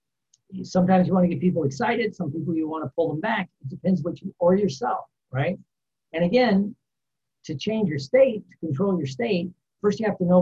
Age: 60-79